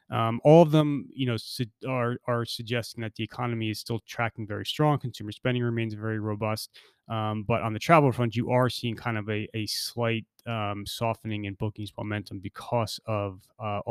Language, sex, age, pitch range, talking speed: English, male, 30-49, 110-130 Hz, 195 wpm